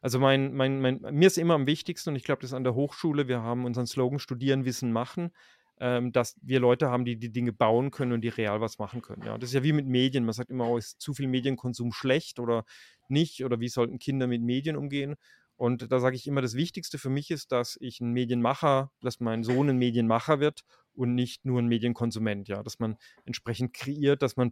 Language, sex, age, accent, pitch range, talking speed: German, male, 30-49, German, 115-130 Hz, 235 wpm